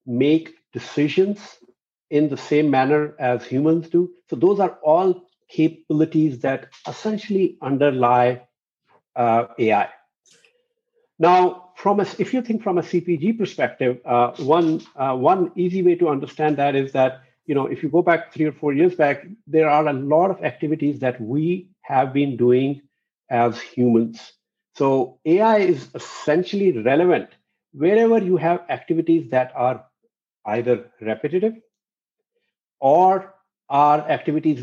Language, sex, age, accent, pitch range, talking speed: English, male, 60-79, Indian, 135-185 Hz, 140 wpm